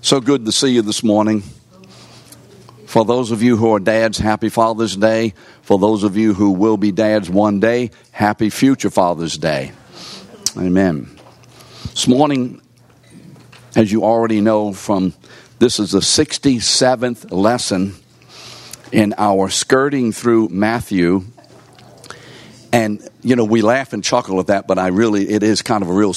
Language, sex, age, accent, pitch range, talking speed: English, male, 60-79, American, 100-120 Hz, 155 wpm